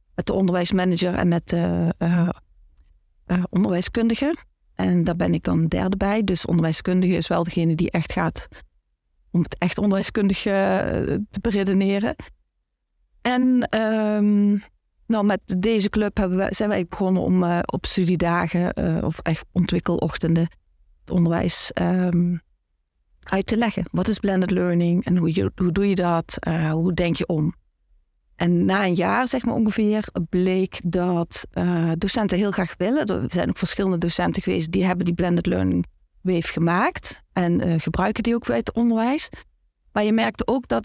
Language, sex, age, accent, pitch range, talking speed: Dutch, female, 40-59, Dutch, 170-200 Hz, 160 wpm